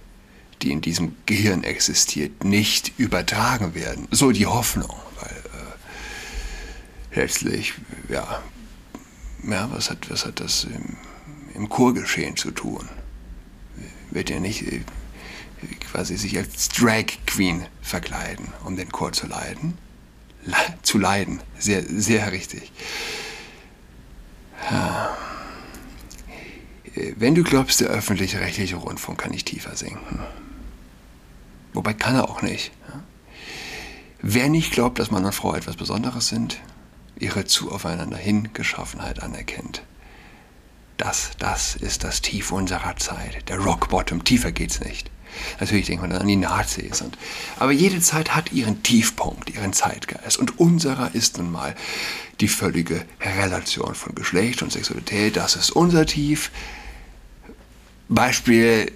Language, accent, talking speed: German, German, 125 wpm